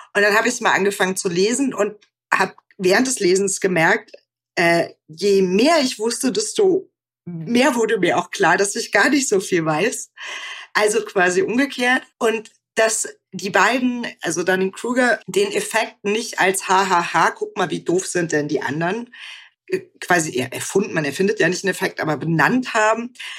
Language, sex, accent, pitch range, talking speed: German, female, German, 175-225 Hz, 170 wpm